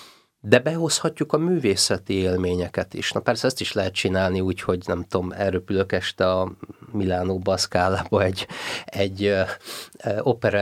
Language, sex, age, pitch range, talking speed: Hungarian, male, 30-49, 95-110 Hz, 135 wpm